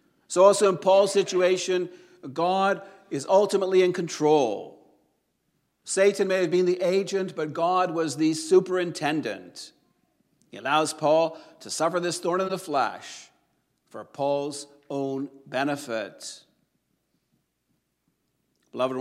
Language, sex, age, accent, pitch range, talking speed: English, male, 50-69, American, 135-180 Hz, 115 wpm